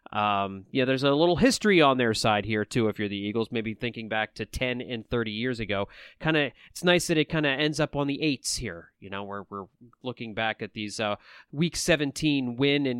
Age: 30-49